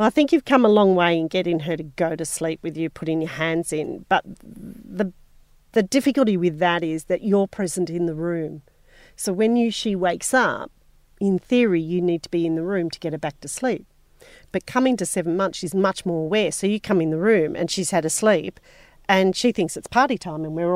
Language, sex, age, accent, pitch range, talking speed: English, female, 40-59, Australian, 170-215 Hz, 240 wpm